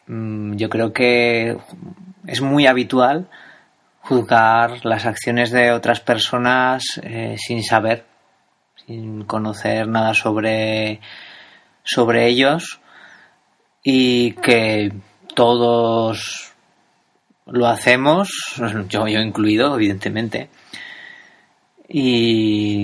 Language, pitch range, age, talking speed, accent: Spanish, 110-125 Hz, 30-49, 80 wpm, Spanish